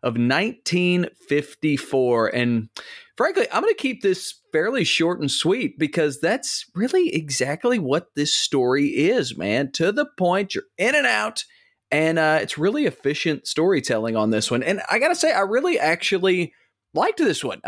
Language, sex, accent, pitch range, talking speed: English, male, American, 125-200 Hz, 160 wpm